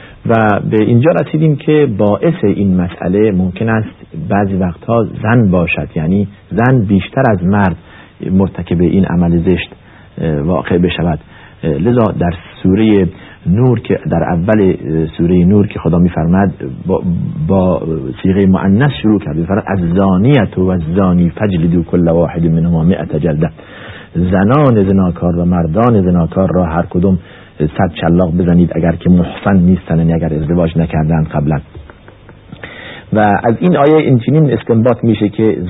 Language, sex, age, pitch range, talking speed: Persian, male, 50-69, 85-120 Hz, 140 wpm